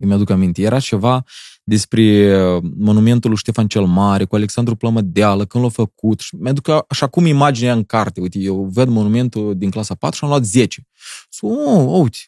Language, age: Romanian, 20-39